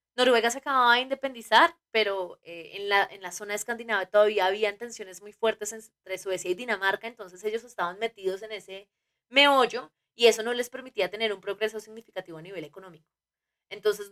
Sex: female